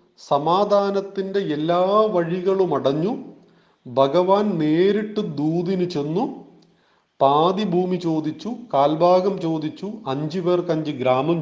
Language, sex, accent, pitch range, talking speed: Malayalam, male, native, 145-200 Hz, 90 wpm